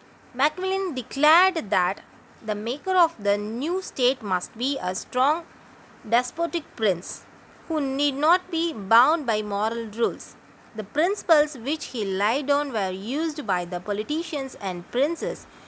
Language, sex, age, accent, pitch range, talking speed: Tamil, female, 20-39, native, 210-300 Hz, 140 wpm